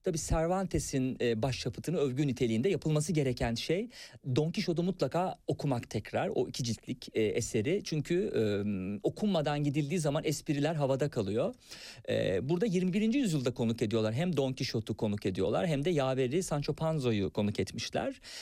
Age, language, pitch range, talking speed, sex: 50-69, Turkish, 120-165 Hz, 135 wpm, male